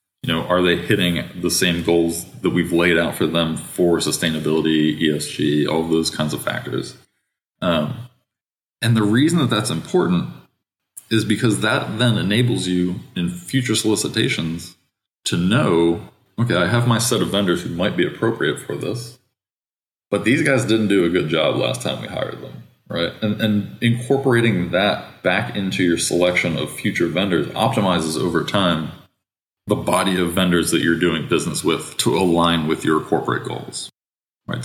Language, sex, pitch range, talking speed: English, male, 85-110 Hz, 170 wpm